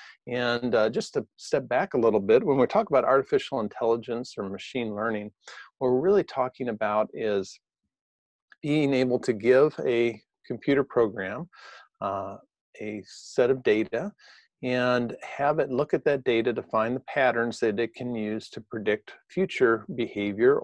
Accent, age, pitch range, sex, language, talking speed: American, 40-59, 105-125 Hz, male, English, 160 wpm